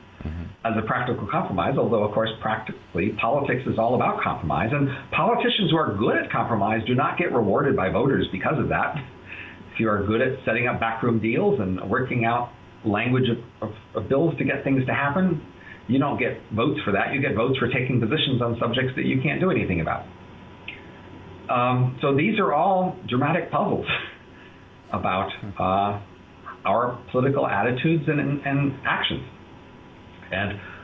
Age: 50-69